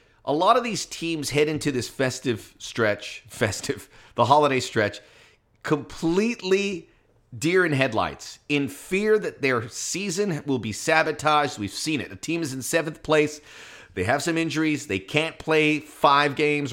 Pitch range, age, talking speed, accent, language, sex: 120-185 Hz, 30-49, 160 wpm, American, English, male